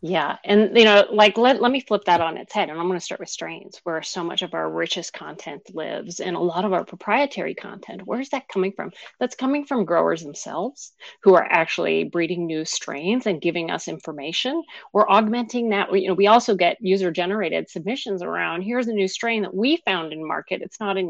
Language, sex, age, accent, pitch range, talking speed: English, female, 40-59, American, 170-225 Hz, 220 wpm